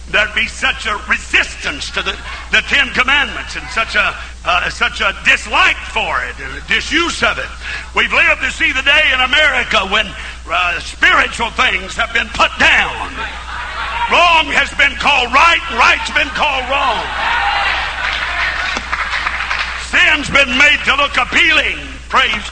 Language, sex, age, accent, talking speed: English, male, 50-69, American, 150 wpm